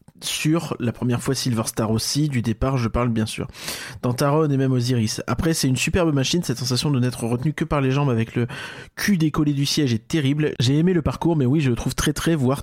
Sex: male